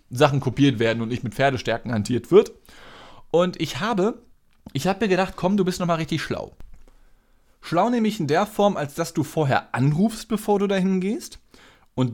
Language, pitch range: German, 130-195 Hz